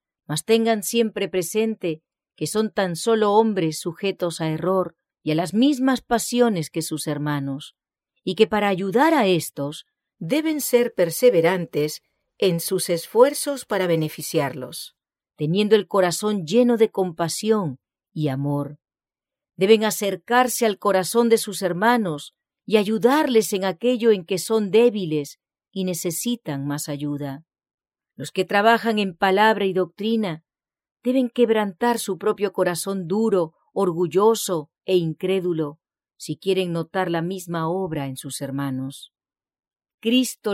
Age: 40-59